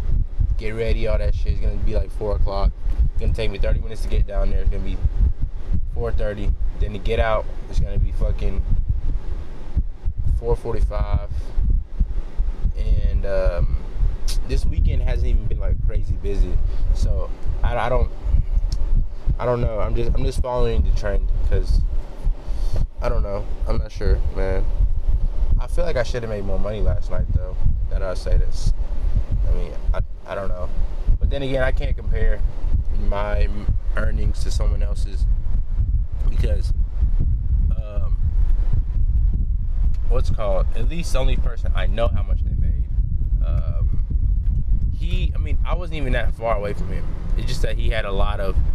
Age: 20-39